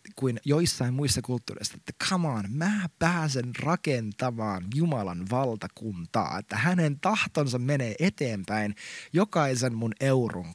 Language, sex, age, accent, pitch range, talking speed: Finnish, male, 20-39, native, 110-160 Hz, 115 wpm